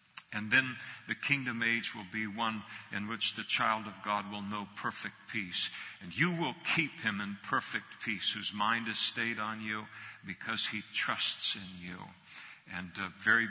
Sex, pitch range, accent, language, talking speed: male, 105-115 Hz, American, English, 180 wpm